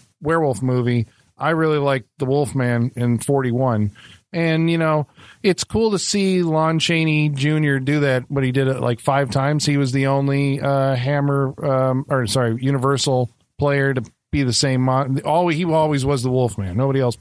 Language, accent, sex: English, American, male